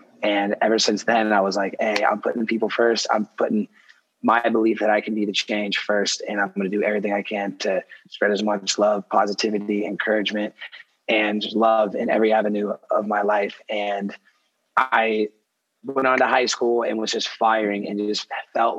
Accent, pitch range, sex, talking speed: American, 100-110 Hz, male, 190 wpm